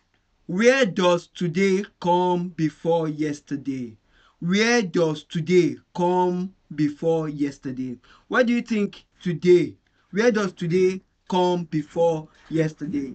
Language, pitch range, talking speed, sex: English, 150-180 Hz, 105 wpm, male